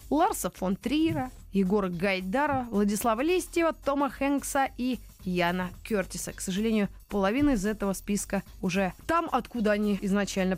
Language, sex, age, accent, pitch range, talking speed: Russian, female, 20-39, native, 195-280 Hz, 130 wpm